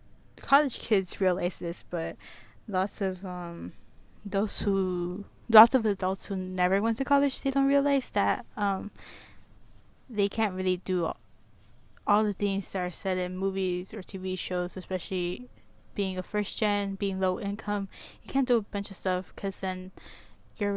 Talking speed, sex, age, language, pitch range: 165 wpm, female, 10-29, English, 180-210 Hz